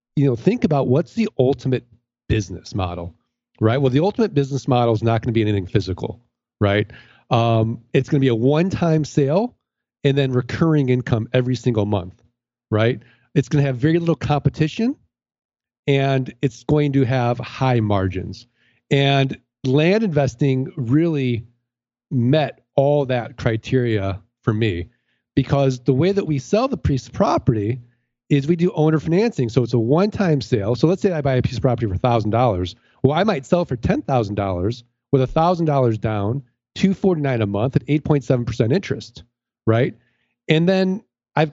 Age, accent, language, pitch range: 40-59, American, English, 120-155 Hz